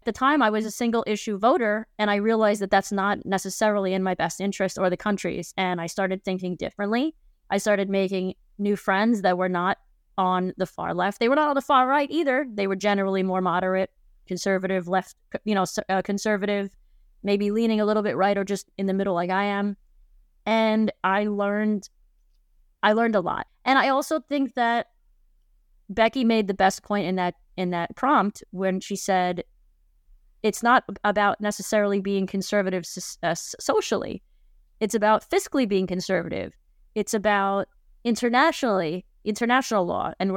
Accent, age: American, 20-39